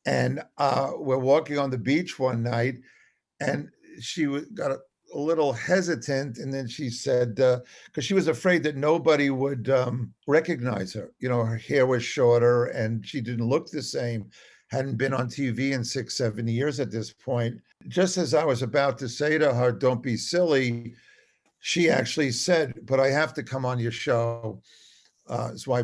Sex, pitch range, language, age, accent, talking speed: male, 120-140 Hz, English, 50-69, American, 185 wpm